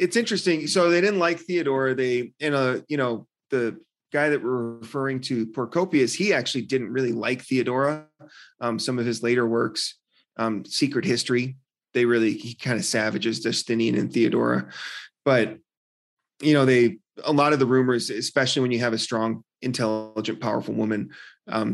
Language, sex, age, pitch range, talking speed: English, male, 30-49, 110-130 Hz, 165 wpm